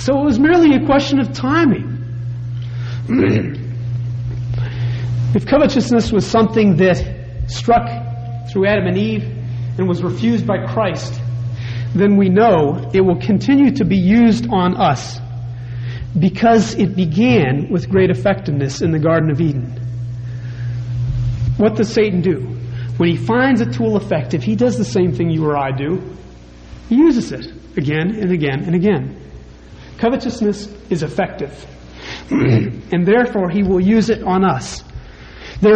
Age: 40-59